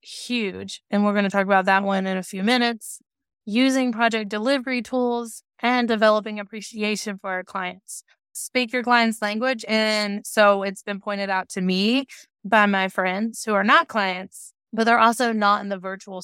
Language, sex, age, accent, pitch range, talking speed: English, female, 20-39, American, 195-235 Hz, 180 wpm